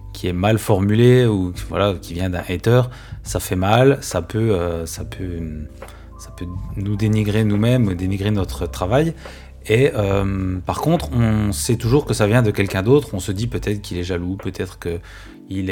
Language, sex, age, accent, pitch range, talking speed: French, male, 30-49, French, 95-115 Hz, 190 wpm